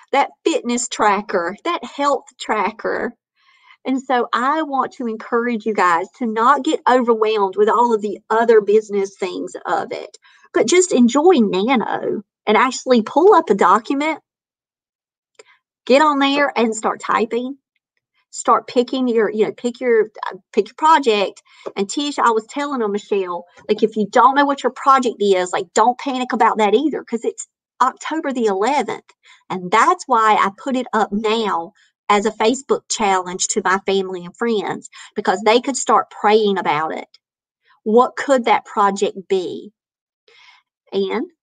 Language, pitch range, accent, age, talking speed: English, 205-270 Hz, American, 40-59, 160 wpm